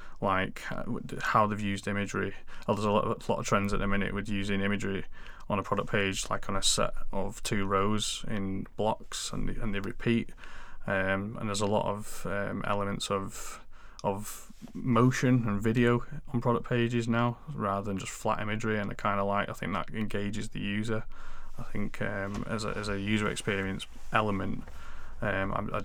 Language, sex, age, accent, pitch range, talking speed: English, male, 20-39, British, 100-110 Hz, 180 wpm